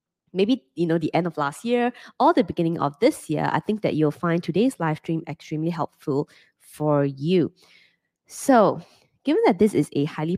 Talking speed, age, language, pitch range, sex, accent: 190 wpm, 20-39, English, 145-180 Hz, female, Malaysian